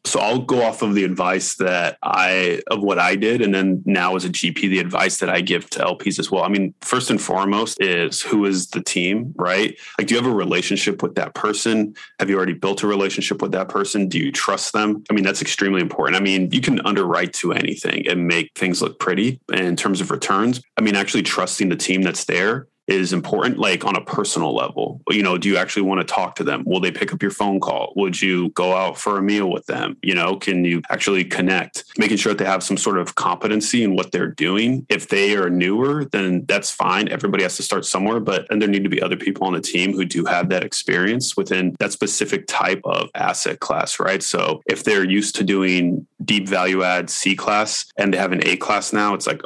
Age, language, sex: 20-39, English, male